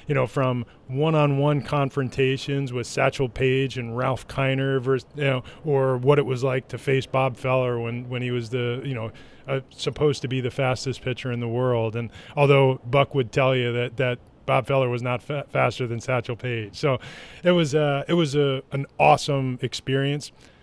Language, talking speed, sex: English, 195 wpm, male